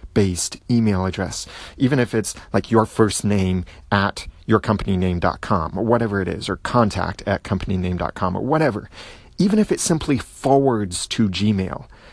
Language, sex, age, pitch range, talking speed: English, male, 30-49, 95-115 Hz, 150 wpm